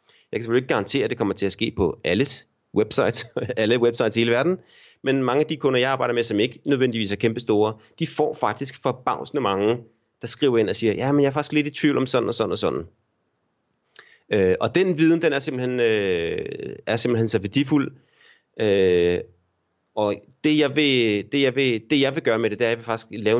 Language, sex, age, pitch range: Danish, male, 30-49, 110-150 Hz